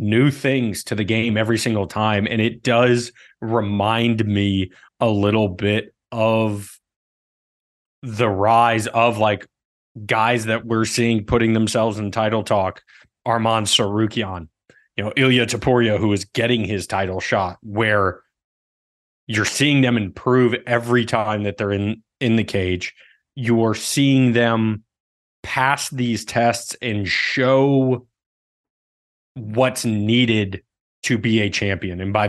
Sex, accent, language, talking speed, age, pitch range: male, American, English, 130 wpm, 20-39, 105-120 Hz